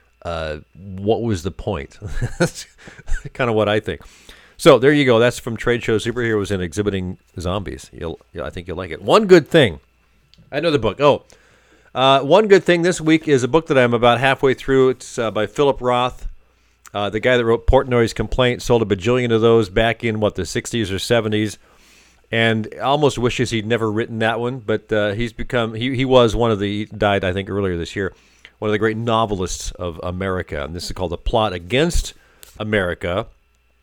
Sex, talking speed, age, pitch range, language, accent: male, 200 wpm, 40-59, 95-125 Hz, English, American